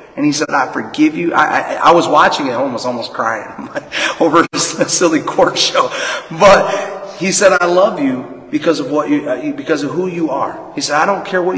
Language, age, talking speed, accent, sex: English, 30-49, 220 wpm, American, male